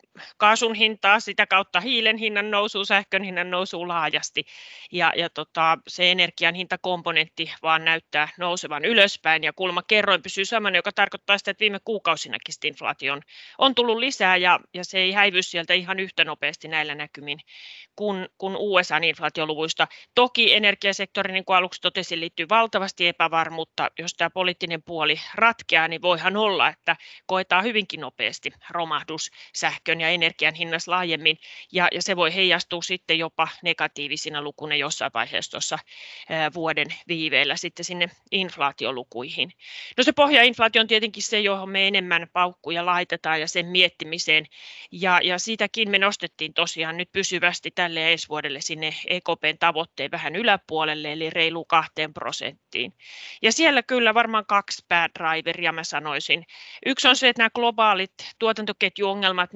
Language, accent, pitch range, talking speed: Finnish, native, 160-200 Hz, 145 wpm